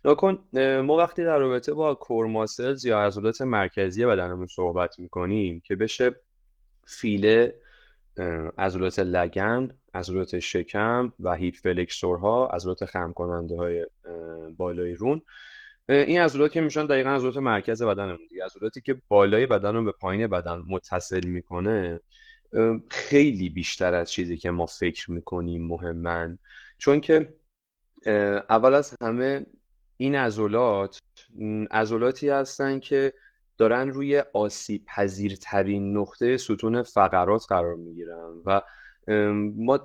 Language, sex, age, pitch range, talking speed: Persian, male, 20-39, 90-125 Hz, 115 wpm